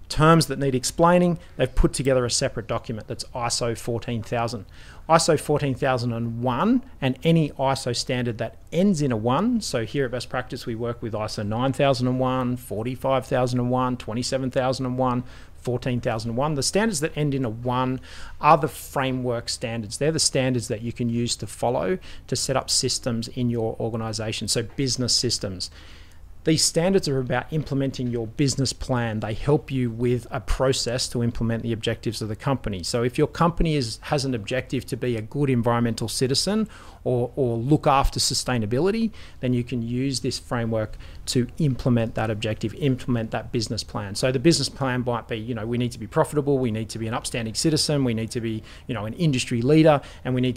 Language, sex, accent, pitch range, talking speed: English, male, Australian, 115-135 Hz, 180 wpm